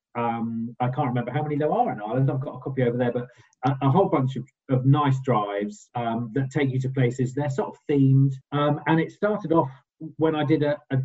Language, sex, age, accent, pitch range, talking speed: English, male, 40-59, British, 125-150 Hz, 245 wpm